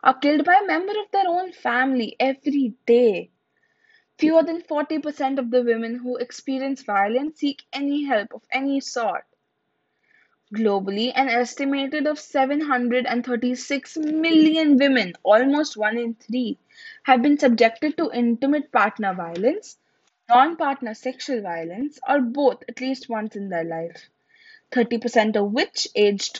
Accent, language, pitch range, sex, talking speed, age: Indian, English, 225-290 Hz, female, 135 wpm, 10-29